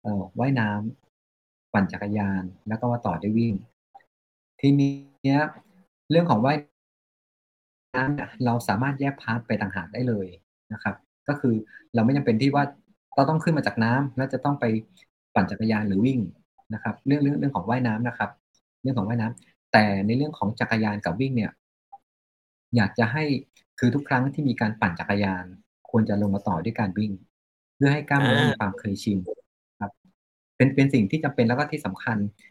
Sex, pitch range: male, 105-130 Hz